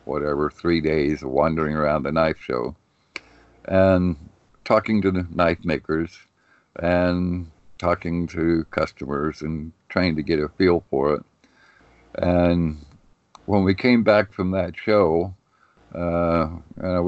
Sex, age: male, 60-79